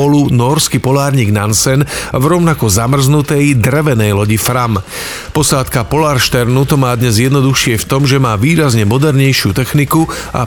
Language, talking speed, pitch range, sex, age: Slovak, 130 wpm, 120-140 Hz, male, 40-59